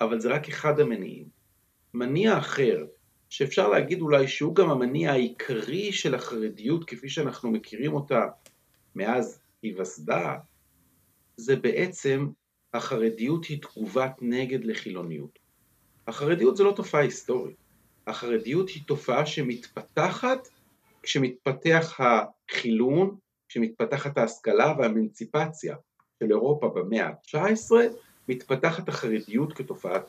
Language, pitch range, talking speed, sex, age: Hebrew, 120-190 Hz, 100 wpm, male, 40-59